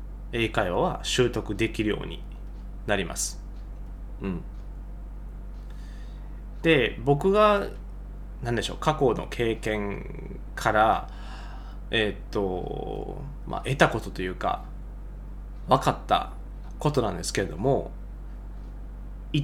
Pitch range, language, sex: 110-160 Hz, Japanese, male